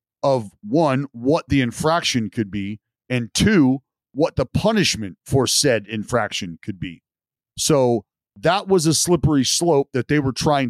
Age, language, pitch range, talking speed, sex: 40-59, English, 120-150 Hz, 150 wpm, male